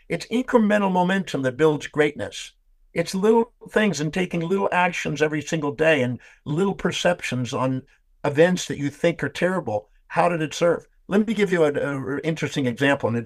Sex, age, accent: male, 60-79, American